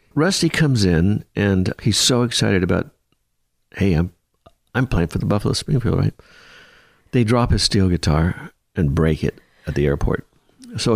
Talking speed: 160 wpm